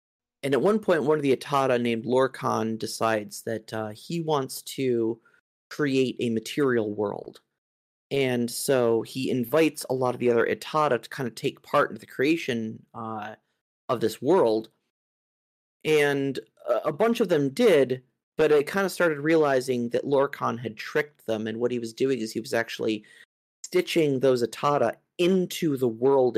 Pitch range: 115-145 Hz